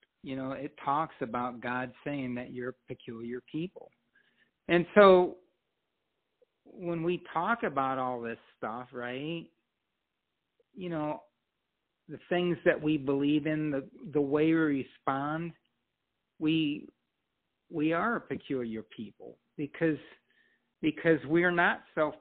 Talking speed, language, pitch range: 130 wpm, English, 135-170 Hz